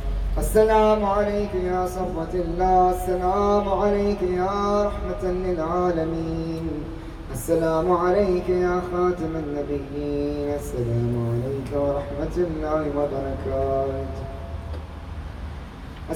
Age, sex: 20-39, male